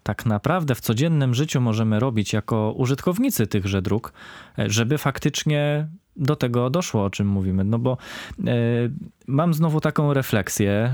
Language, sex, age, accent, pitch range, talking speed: Polish, male, 20-39, native, 105-140 Hz, 135 wpm